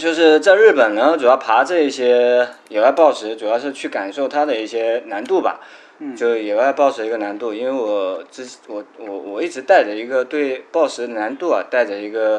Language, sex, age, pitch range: Chinese, male, 20-39, 105-135 Hz